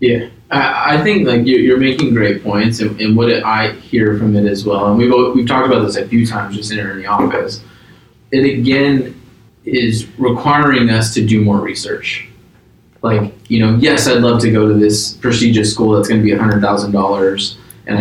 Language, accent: English, American